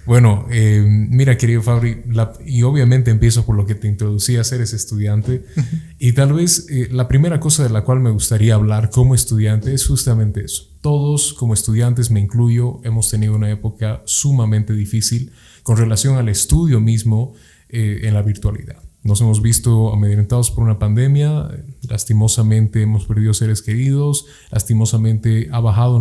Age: 20-39